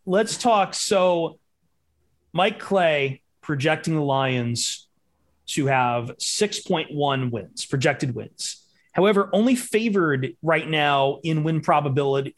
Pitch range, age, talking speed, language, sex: 130-170 Hz, 30-49, 105 wpm, English, male